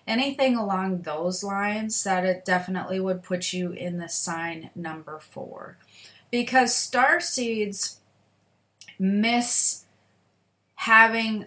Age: 30-49